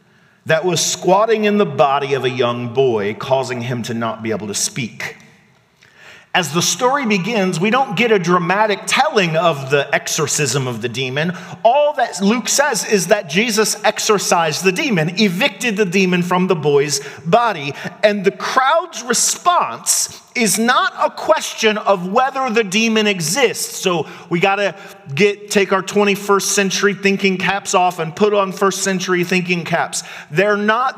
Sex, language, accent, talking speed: male, English, American, 165 wpm